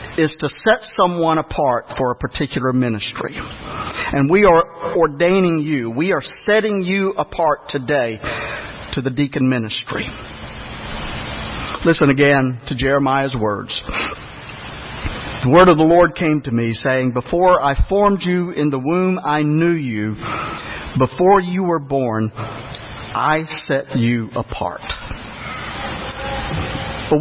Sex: male